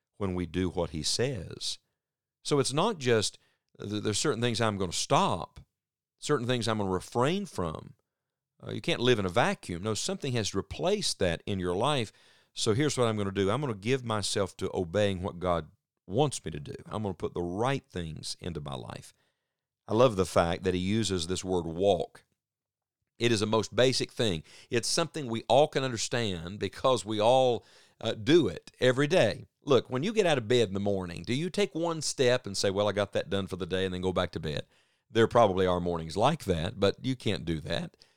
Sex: male